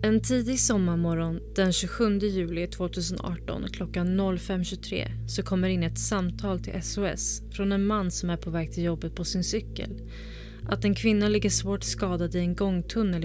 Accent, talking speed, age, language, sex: native, 170 wpm, 20-39, Swedish, female